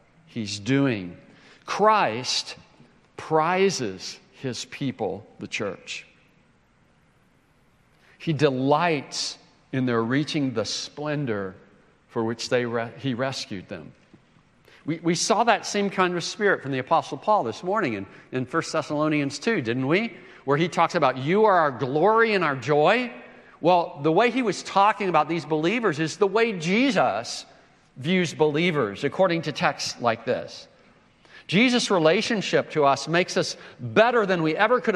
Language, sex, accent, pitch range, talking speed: English, male, American, 130-180 Hz, 145 wpm